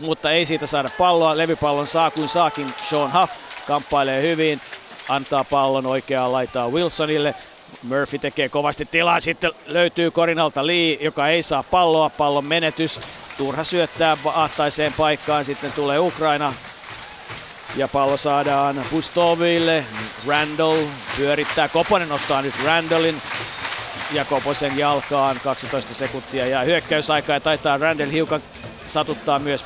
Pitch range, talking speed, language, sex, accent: 135-155 Hz, 125 wpm, Finnish, male, native